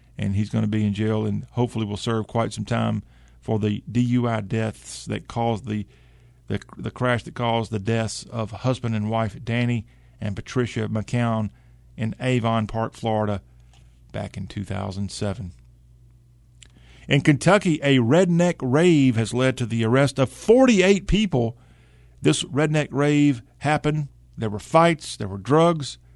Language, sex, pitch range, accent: English, male, 105-135 Hz, American